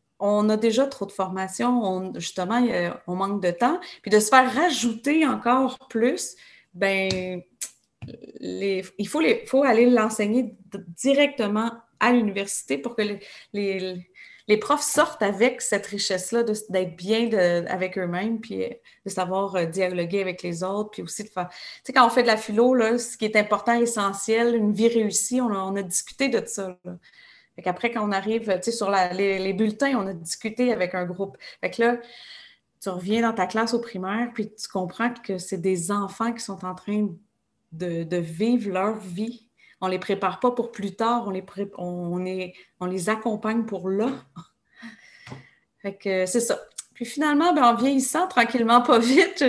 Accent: Canadian